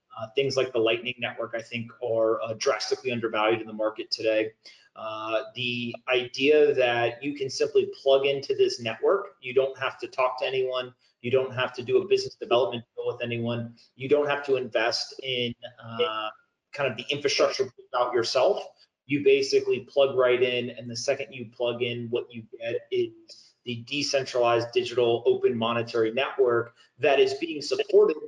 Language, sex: English, male